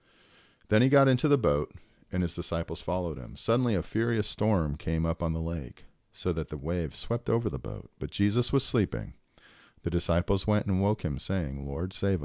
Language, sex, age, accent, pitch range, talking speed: English, male, 40-59, American, 80-105 Hz, 200 wpm